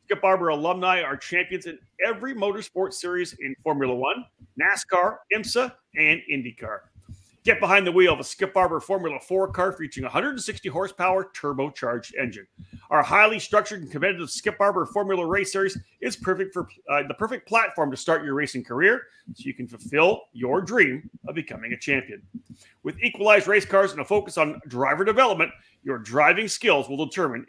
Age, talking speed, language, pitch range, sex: 40-59, 165 wpm, English, 145-195 Hz, male